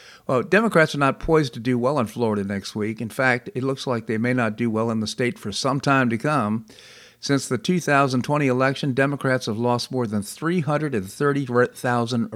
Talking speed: 195 wpm